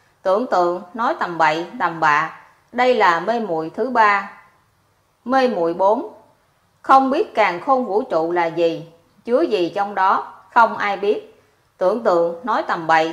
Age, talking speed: 20-39, 165 wpm